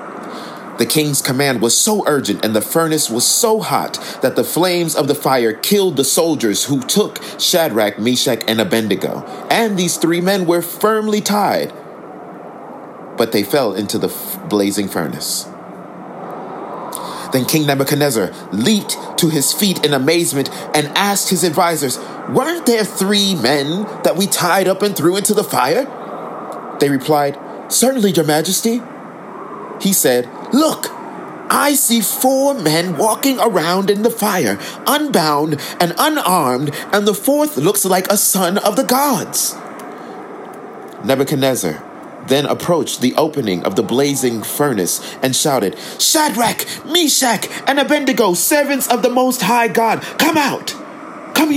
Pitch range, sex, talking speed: 140-230 Hz, male, 140 wpm